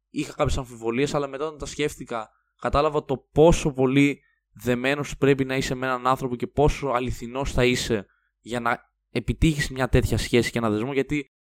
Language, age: Greek, 20-39